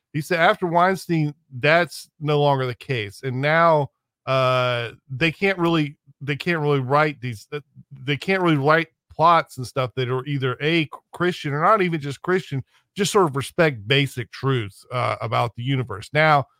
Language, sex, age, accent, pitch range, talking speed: English, male, 40-59, American, 125-155 Hz, 175 wpm